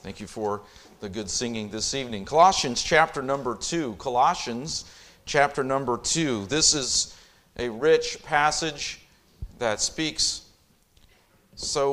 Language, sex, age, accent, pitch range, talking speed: English, male, 40-59, American, 110-140 Hz, 120 wpm